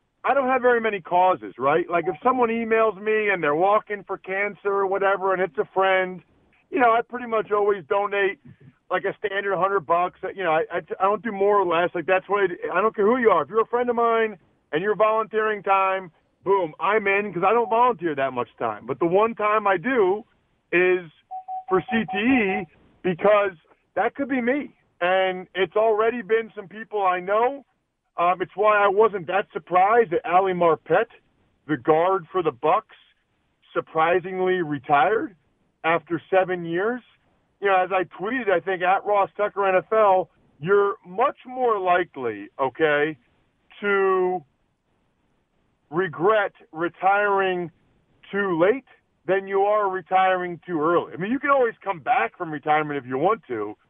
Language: English